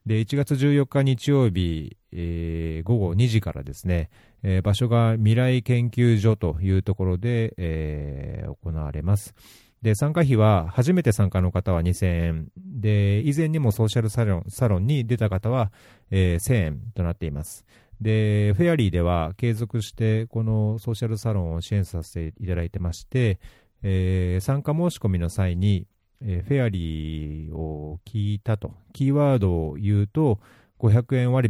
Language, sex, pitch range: Japanese, male, 90-120 Hz